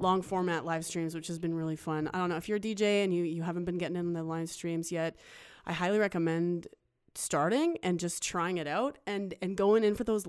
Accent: American